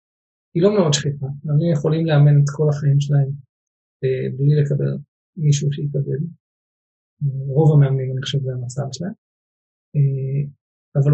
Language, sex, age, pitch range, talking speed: Hebrew, male, 50-69, 135-155 Hz, 125 wpm